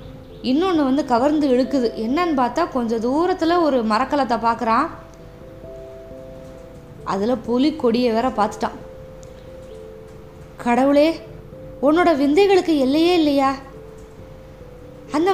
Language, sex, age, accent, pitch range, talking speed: Tamil, female, 20-39, native, 220-300 Hz, 85 wpm